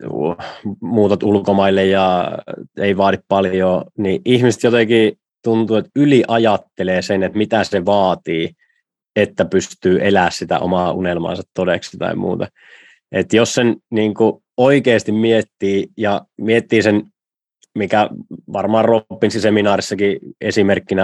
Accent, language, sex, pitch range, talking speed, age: native, Finnish, male, 95-115 Hz, 115 wpm, 20-39